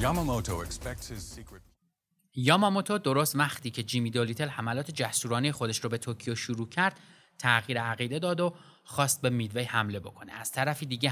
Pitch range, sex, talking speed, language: 120-170 Hz, male, 140 wpm, Persian